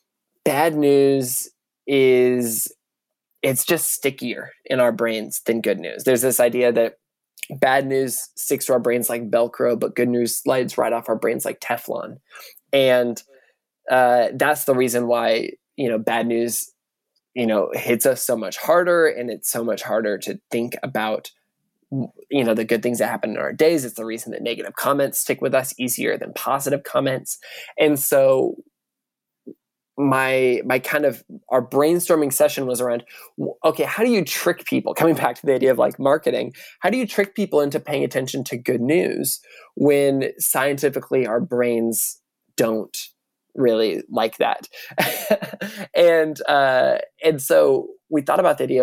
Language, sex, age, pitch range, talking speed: English, male, 20-39, 120-150 Hz, 160 wpm